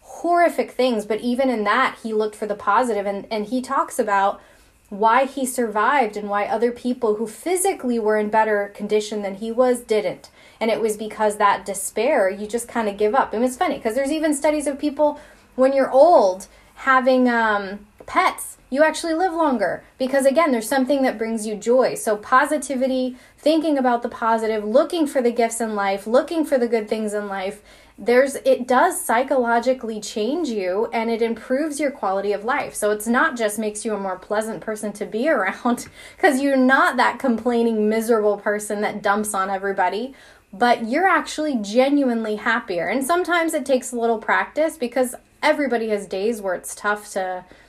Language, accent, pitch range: English, American, 210-270 Hz